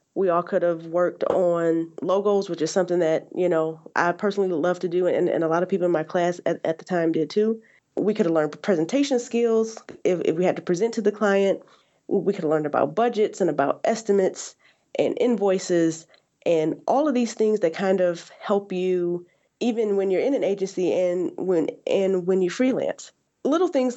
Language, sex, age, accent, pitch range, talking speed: English, female, 20-39, American, 175-205 Hz, 205 wpm